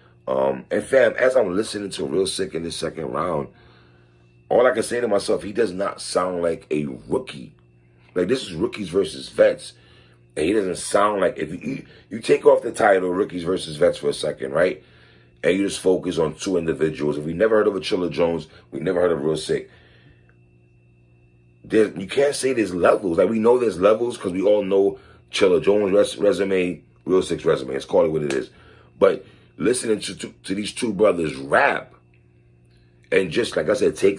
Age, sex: 30-49, male